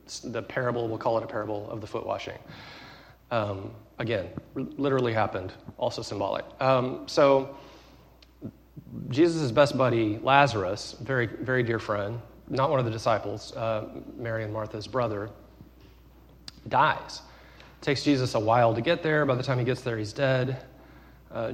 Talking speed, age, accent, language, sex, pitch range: 150 wpm, 30-49, American, English, male, 110-145 Hz